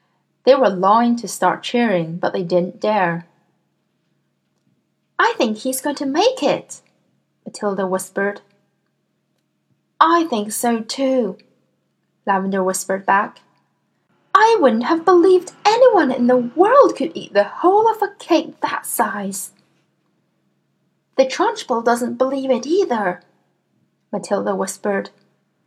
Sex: female